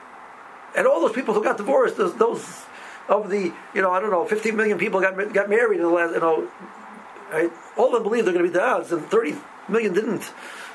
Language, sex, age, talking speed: English, male, 60-79, 230 wpm